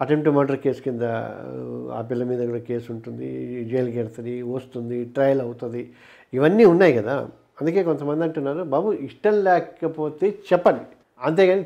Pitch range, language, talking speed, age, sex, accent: 135-180 Hz, Telugu, 135 wpm, 50-69, male, native